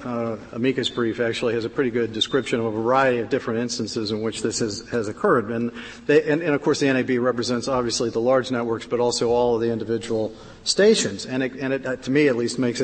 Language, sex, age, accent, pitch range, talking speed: English, male, 50-69, American, 120-145 Hz, 235 wpm